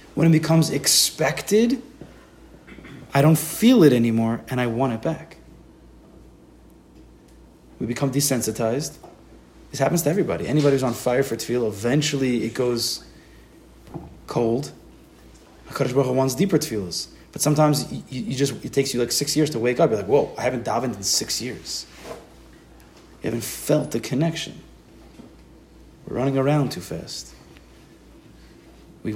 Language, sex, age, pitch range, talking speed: English, male, 30-49, 115-150 Hz, 145 wpm